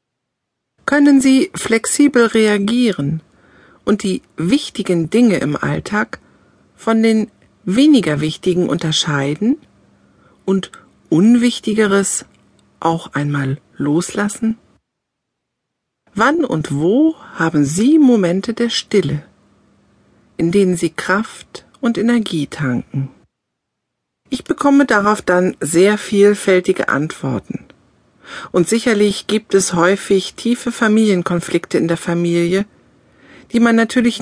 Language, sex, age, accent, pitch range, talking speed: German, female, 50-69, German, 170-225 Hz, 95 wpm